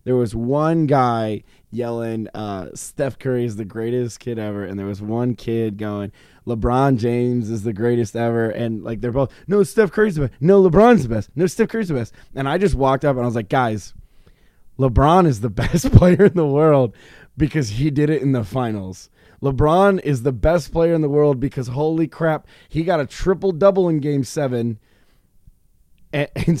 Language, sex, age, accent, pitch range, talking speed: English, male, 20-39, American, 120-155 Hz, 195 wpm